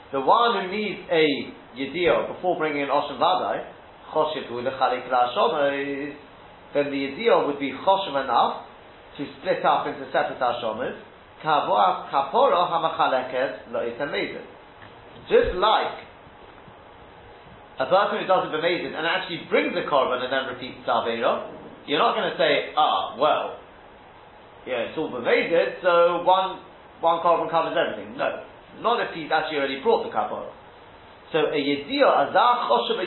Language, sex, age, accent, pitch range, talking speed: English, male, 40-59, British, 150-225 Hz, 145 wpm